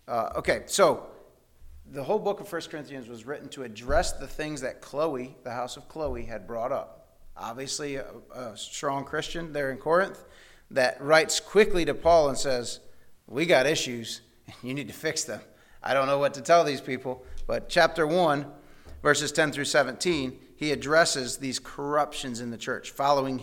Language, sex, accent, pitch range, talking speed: English, male, American, 130-160 Hz, 180 wpm